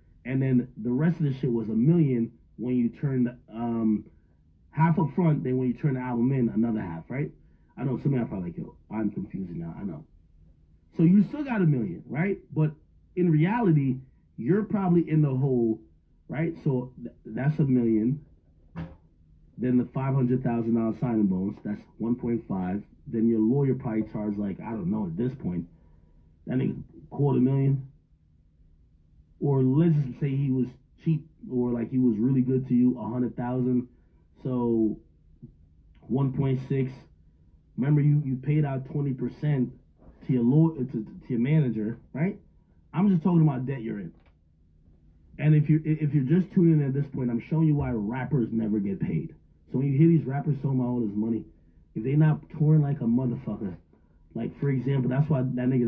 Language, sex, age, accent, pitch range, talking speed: English, male, 30-49, American, 110-145 Hz, 180 wpm